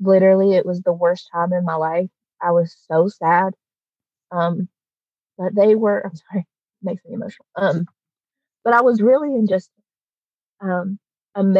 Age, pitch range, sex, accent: 20-39, 175-200 Hz, female, American